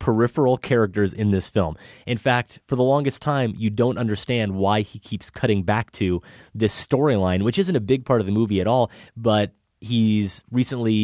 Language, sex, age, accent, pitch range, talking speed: English, male, 30-49, American, 100-125 Hz, 190 wpm